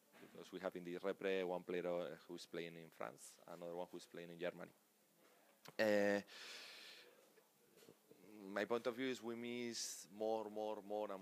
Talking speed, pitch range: 165 wpm, 90-105 Hz